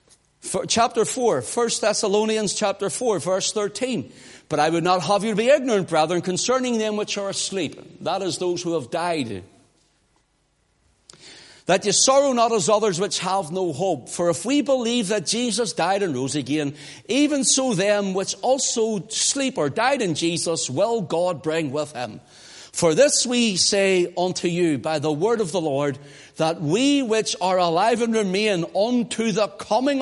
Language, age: English, 60-79